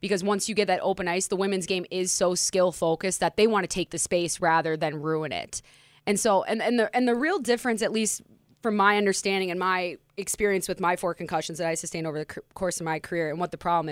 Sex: female